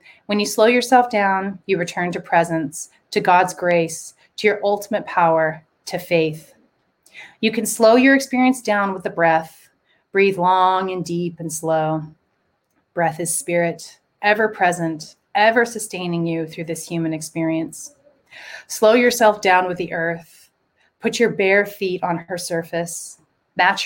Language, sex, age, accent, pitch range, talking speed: English, female, 30-49, American, 165-210 Hz, 150 wpm